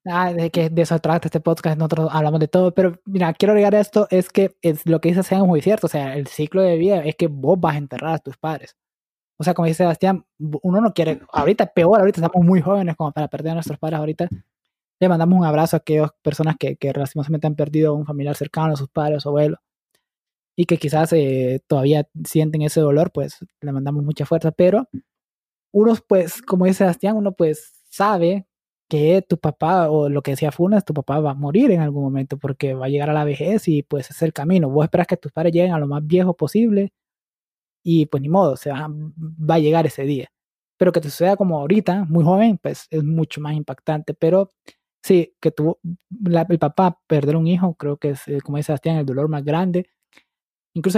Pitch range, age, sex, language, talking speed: 150-180 Hz, 20-39, male, Spanish, 225 wpm